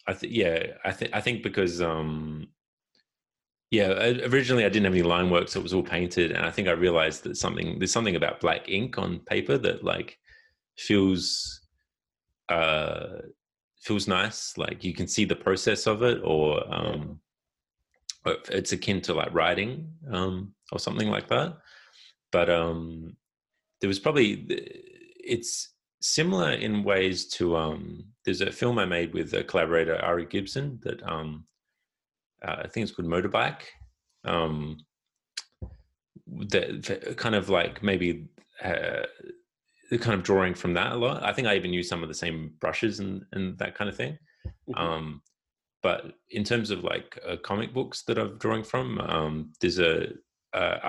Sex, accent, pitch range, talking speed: male, Australian, 85-120 Hz, 165 wpm